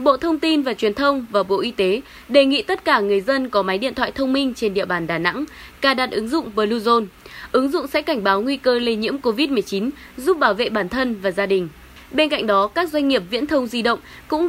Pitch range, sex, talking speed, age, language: 210-285 Hz, female, 255 wpm, 10-29, Vietnamese